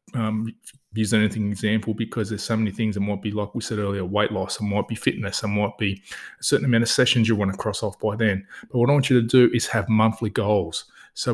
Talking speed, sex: 260 wpm, male